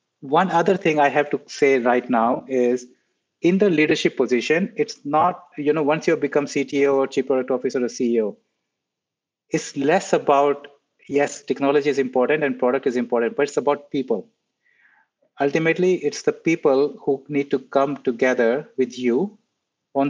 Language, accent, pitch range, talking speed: English, Indian, 125-150 Hz, 165 wpm